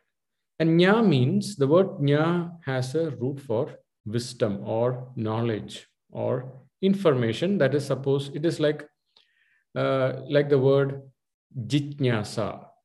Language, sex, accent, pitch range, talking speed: English, male, Indian, 125-165 Hz, 120 wpm